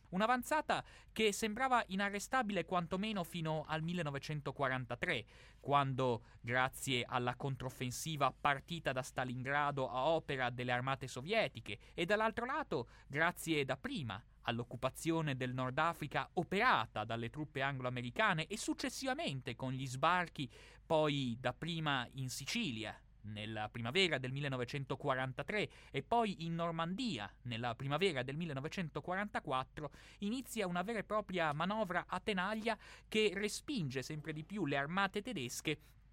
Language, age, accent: Italian, 30-49, native